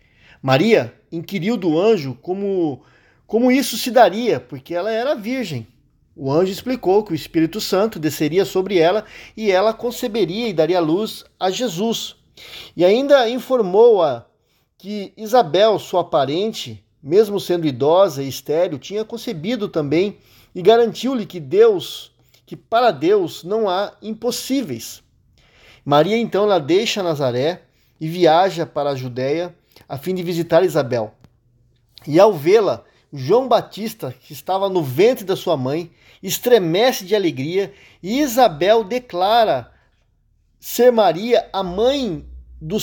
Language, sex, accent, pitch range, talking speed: Portuguese, male, Brazilian, 155-220 Hz, 130 wpm